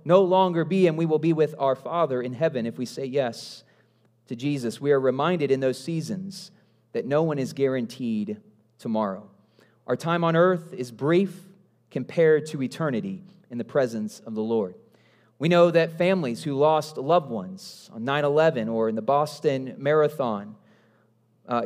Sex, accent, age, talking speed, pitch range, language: male, American, 30-49, 170 wpm, 130-180 Hz, English